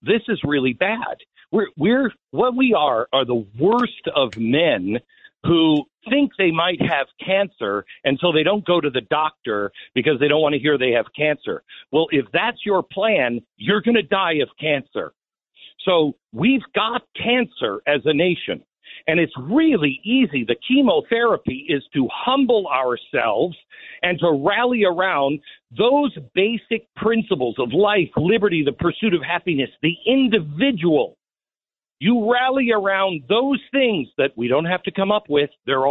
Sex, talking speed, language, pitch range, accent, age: male, 160 wpm, English, 150-220 Hz, American, 50-69